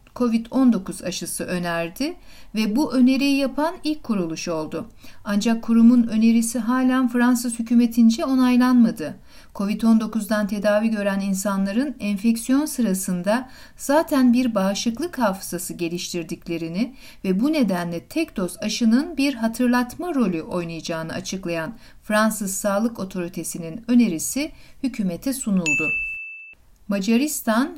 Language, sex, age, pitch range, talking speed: Turkish, female, 60-79, 190-250 Hz, 100 wpm